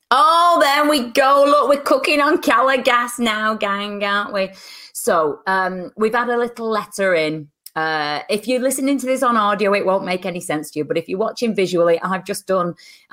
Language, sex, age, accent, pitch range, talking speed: English, female, 30-49, British, 165-260 Hz, 205 wpm